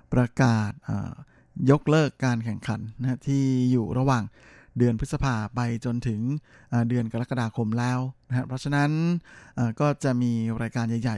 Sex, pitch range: male, 115-135 Hz